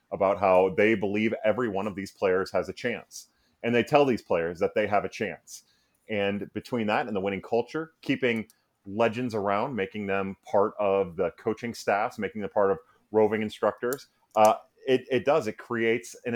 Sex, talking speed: male, 190 wpm